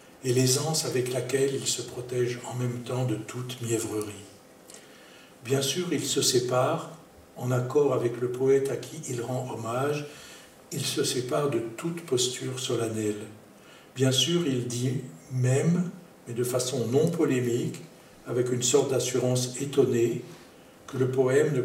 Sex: male